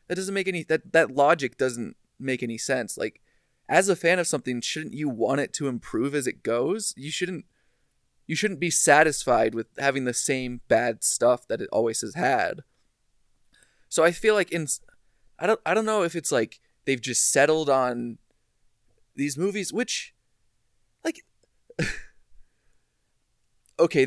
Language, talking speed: English, 160 wpm